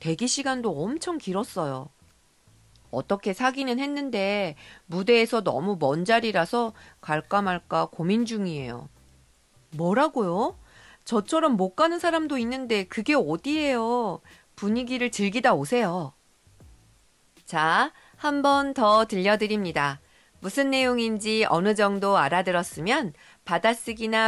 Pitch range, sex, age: 160-245 Hz, female, 40-59